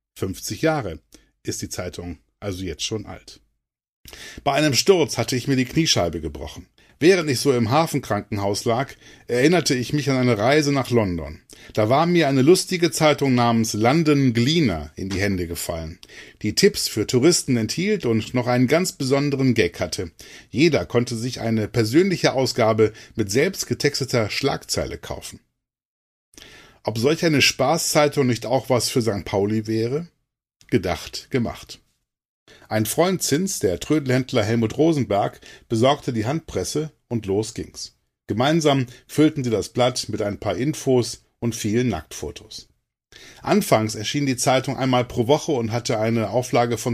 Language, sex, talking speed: German, male, 150 wpm